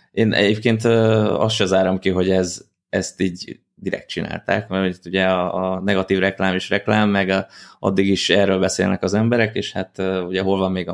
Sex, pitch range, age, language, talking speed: male, 95-105 Hz, 20-39, Hungarian, 190 wpm